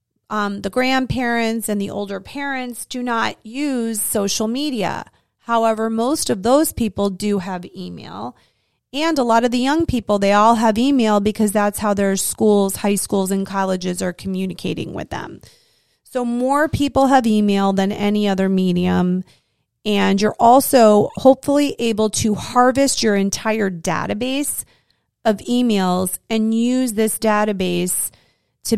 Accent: American